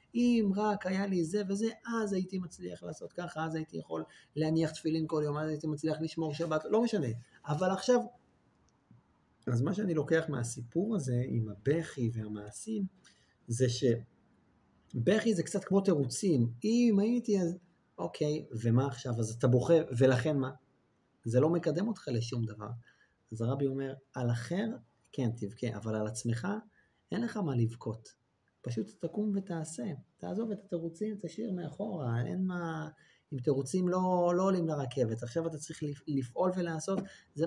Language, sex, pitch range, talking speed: Hebrew, male, 120-175 Hz, 155 wpm